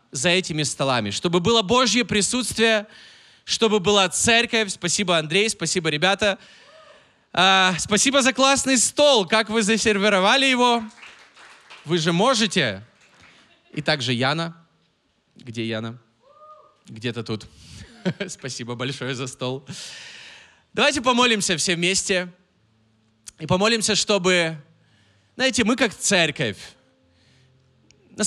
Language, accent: Russian, native